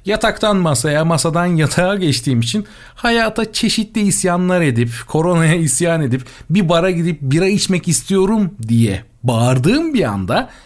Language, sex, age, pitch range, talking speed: Turkish, male, 40-59, 120-175 Hz, 130 wpm